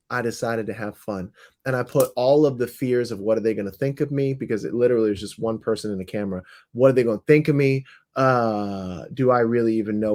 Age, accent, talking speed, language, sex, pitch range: 30-49, American, 265 wpm, English, male, 115-185 Hz